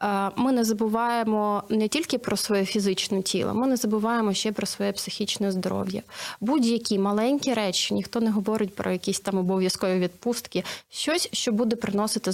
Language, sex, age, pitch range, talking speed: Ukrainian, female, 30-49, 200-245 Hz, 155 wpm